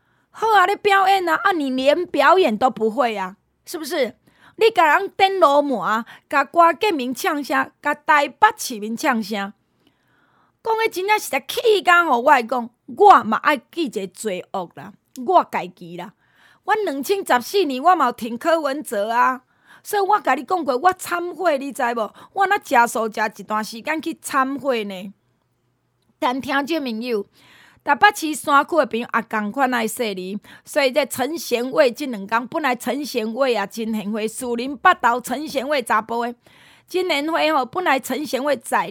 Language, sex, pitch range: Chinese, female, 230-325 Hz